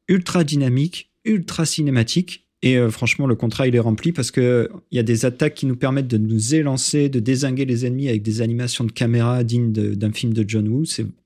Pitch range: 115-155 Hz